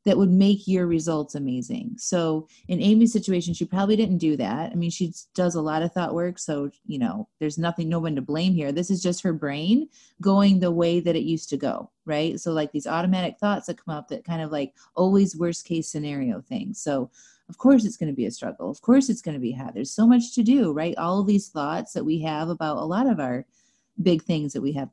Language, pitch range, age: English, 155-210 Hz, 30-49